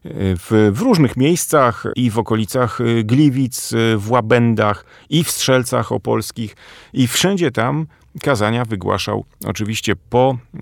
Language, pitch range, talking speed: Polish, 95-125 Hz, 120 wpm